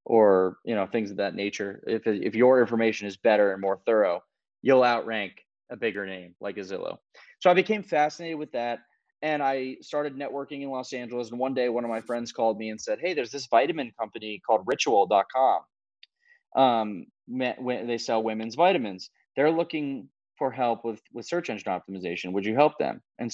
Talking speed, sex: 190 wpm, male